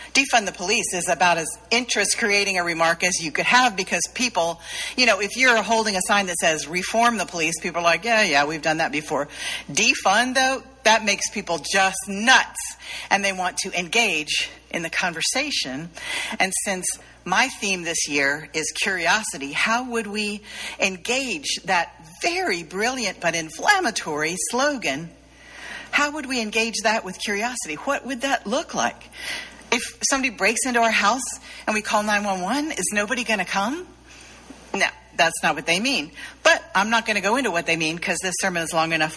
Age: 50-69